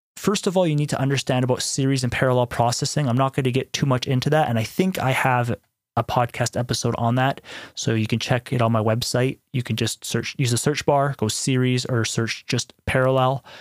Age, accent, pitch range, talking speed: 30-49, American, 120-140 Hz, 235 wpm